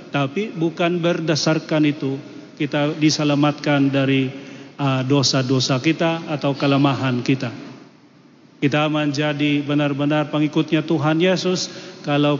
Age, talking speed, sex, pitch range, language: 40-59, 90 wpm, male, 140-160 Hz, Indonesian